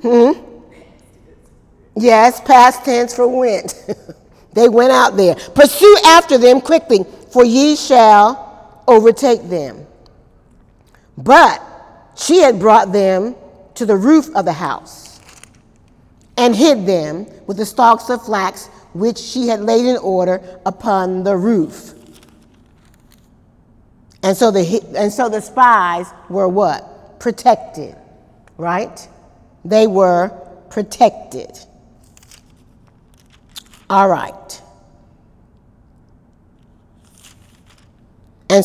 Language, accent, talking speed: English, American, 100 wpm